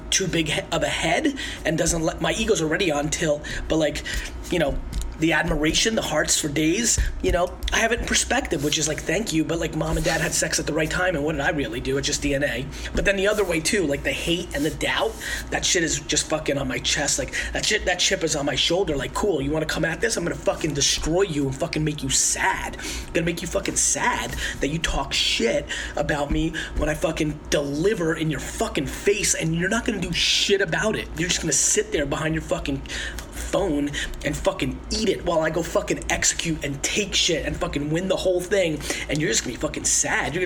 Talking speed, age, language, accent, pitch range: 245 wpm, 20-39, English, American, 155-225 Hz